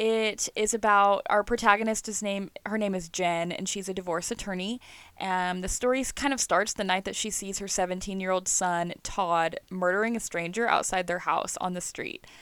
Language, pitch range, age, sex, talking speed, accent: English, 185-225 Hz, 10-29, female, 190 wpm, American